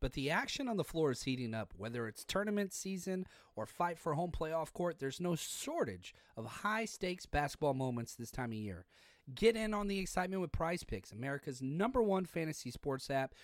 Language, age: English, 30-49